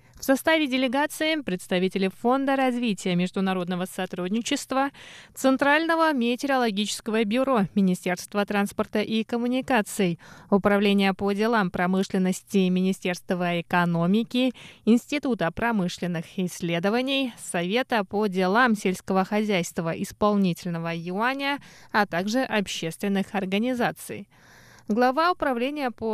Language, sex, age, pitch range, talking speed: Russian, female, 20-39, 190-250 Hz, 85 wpm